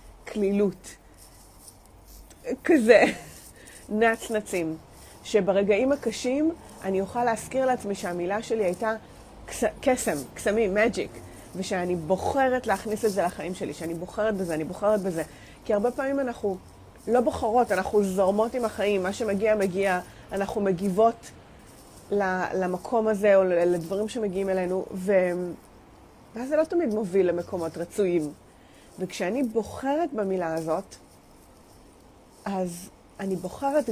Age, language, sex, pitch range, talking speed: 30-49, English, female, 180-225 Hz, 110 wpm